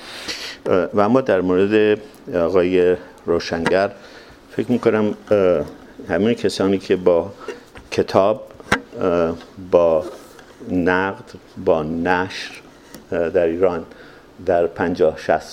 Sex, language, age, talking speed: male, English, 50-69, 80 wpm